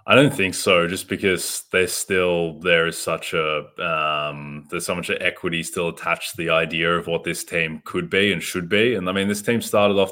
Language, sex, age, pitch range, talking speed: English, male, 20-39, 80-100 Hz, 225 wpm